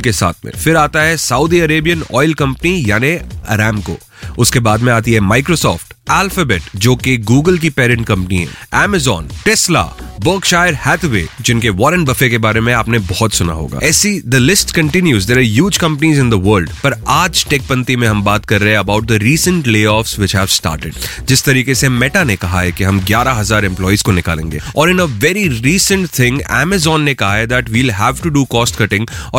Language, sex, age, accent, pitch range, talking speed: Hindi, male, 30-49, native, 105-150 Hz, 70 wpm